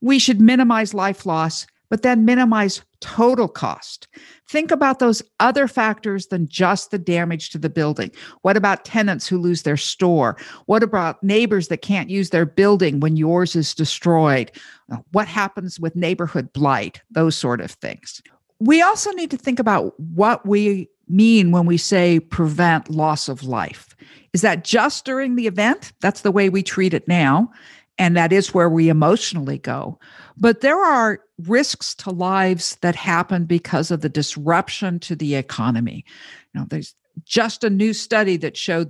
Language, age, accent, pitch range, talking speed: English, 50-69, American, 165-220 Hz, 165 wpm